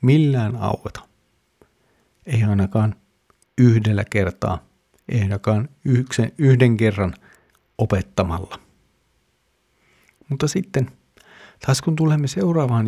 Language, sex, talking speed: Finnish, male, 85 wpm